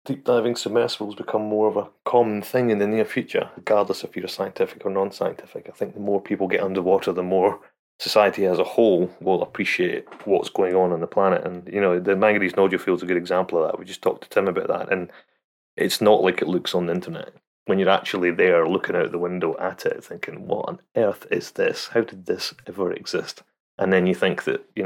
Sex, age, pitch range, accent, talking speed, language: male, 30-49, 95-130 Hz, British, 230 wpm, English